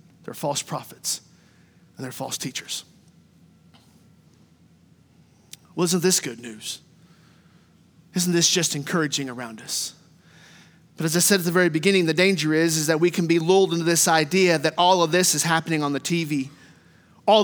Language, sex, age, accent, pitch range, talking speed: English, male, 30-49, American, 155-185 Hz, 165 wpm